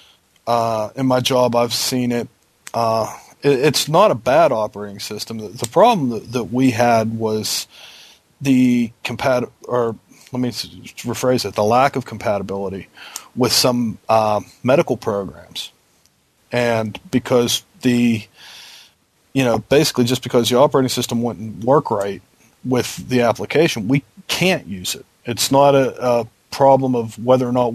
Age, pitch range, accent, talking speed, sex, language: 40-59, 115-130 Hz, American, 150 wpm, male, English